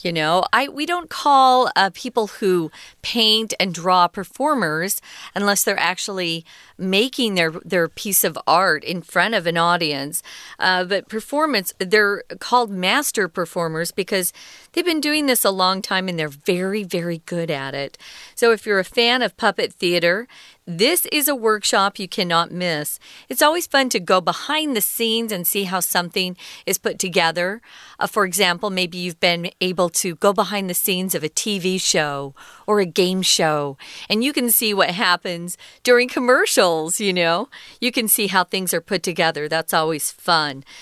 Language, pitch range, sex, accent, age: Chinese, 175-230 Hz, female, American, 40-59